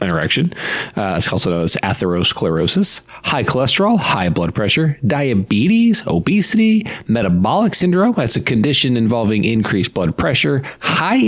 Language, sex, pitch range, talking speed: English, male, 110-175 Hz, 130 wpm